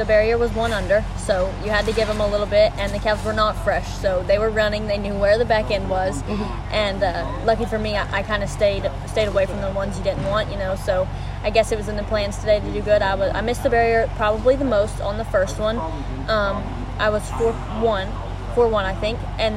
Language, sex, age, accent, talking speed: English, female, 10-29, American, 260 wpm